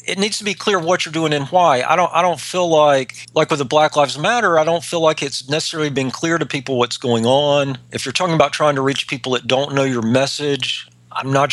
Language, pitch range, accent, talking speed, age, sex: English, 125-155 Hz, American, 260 wpm, 40-59, male